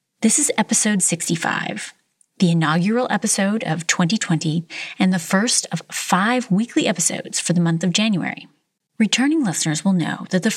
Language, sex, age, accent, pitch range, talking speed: English, female, 30-49, American, 175-230 Hz, 155 wpm